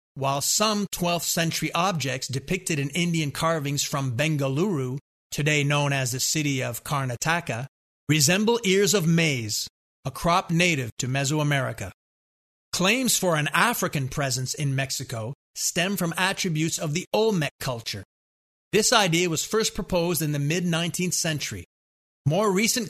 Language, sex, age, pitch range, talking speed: English, male, 30-49, 140-175 Hz, 140 wpm